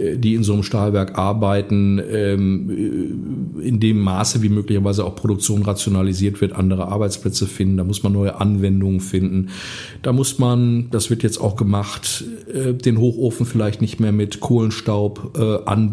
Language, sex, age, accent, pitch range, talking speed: German, male, 50-69, German, 100-115 Hz, 145 wpm